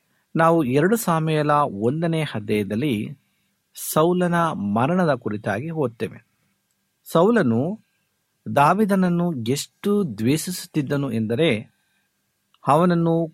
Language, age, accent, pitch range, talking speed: Kannada, 60-79, native, 115-175 Hz, 65 wpm